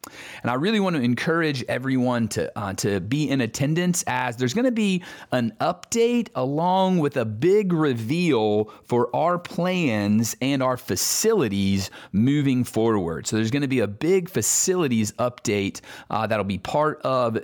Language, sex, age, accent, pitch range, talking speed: English, male, 40-59, American, 110-155 Hz, 160 wpm